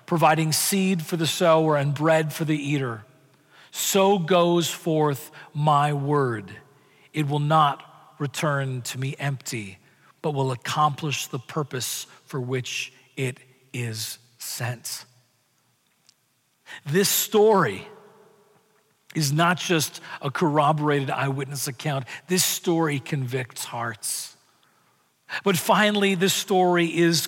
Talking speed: 110 wpm